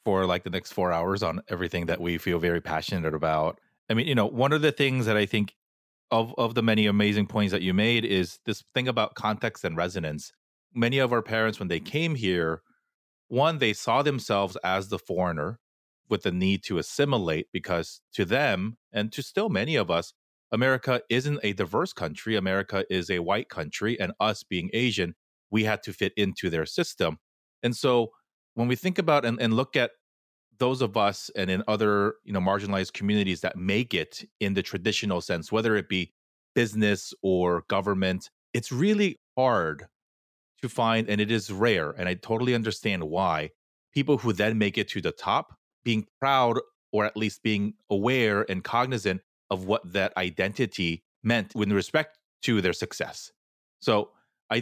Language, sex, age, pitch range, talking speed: English, male, 30-49, 95-120 Hz, 185 wpm